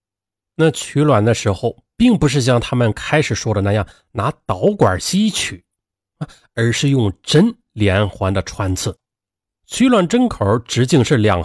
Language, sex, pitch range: Chinese, male, 100-150 Hz